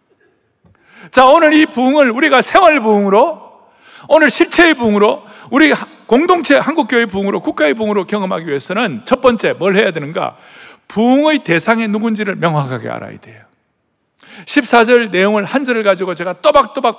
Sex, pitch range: male, 205-275 Hz